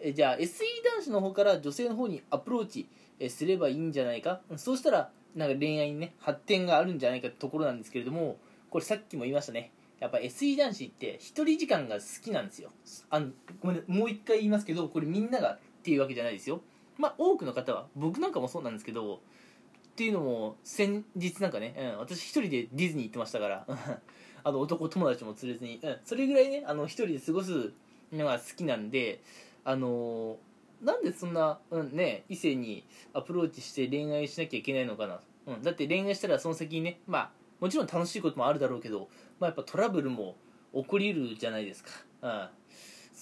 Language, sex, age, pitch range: Japanese, male, 20-39, 145-240 Hz